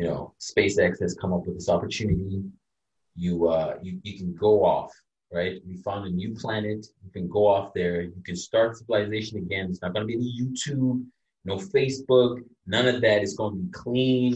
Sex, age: male, 20-39